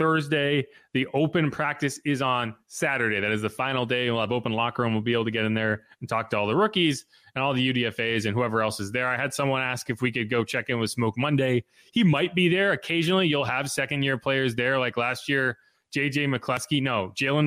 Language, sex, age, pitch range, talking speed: English, male, 20-39, 115-140 Hz, 235 wpm